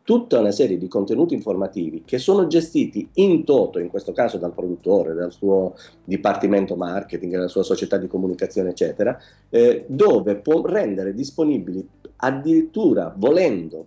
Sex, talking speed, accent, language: male, 145 wpm, native, Italian